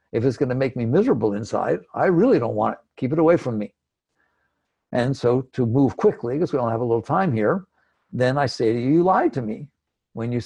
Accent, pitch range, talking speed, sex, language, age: American, 120-165 Hz, 235 wpm, male, English, 60-79